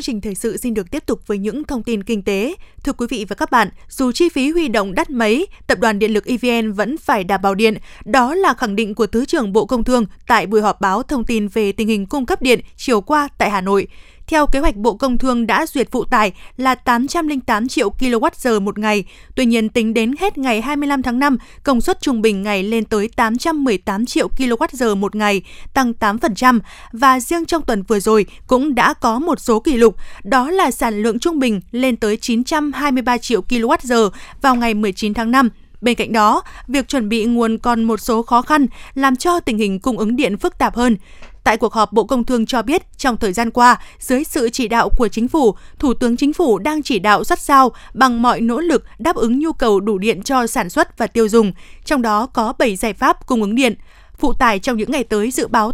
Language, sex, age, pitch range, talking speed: Vietnamese, female, 20-39, 220-275 Hz, 230 wpm